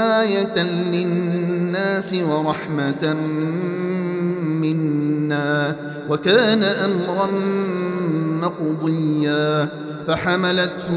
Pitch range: 175-225 Hz